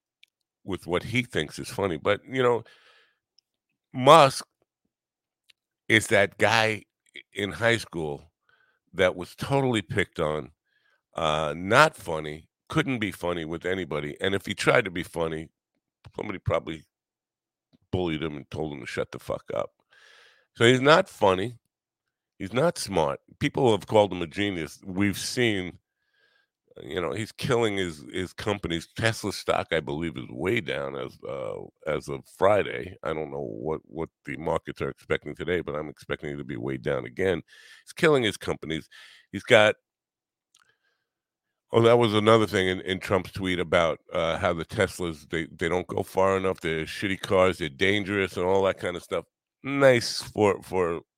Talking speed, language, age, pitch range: 165 wpm, English, 50-69, 85-125 Hz